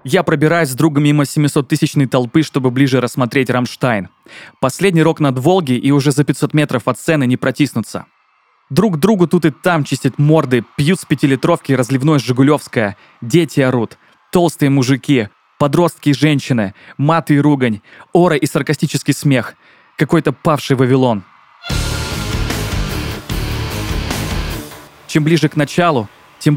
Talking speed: 130 wpm